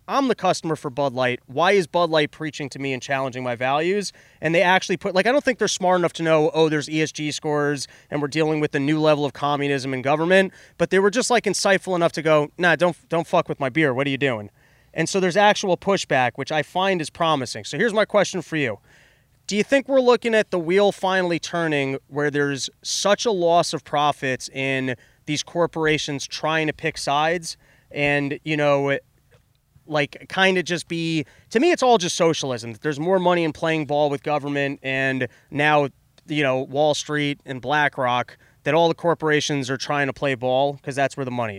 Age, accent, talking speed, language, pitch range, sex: 30-49, American, 215 wpm, English, 135-170 Hz, male